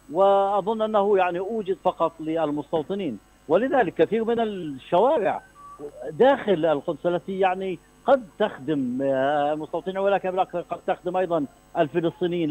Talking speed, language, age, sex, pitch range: 105 wpm, Arabic, 60-79, male, 155-185 Hz